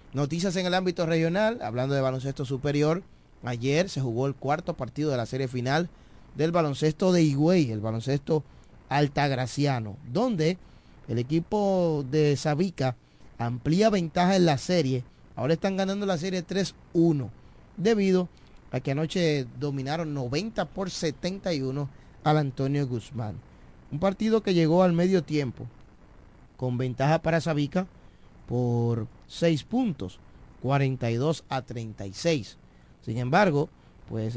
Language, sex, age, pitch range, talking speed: Spanish, male, 30-49, 120-165 Hz, 125 wpm